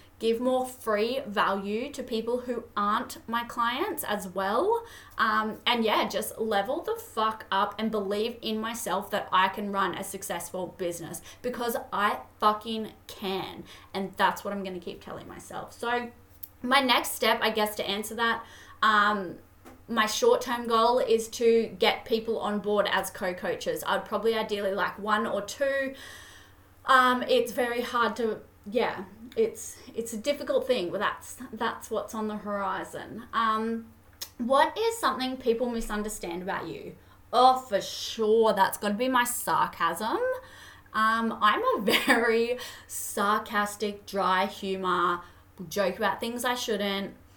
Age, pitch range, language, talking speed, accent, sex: 20-39, 205-245 Hz, English, 150 wpm, Australian, female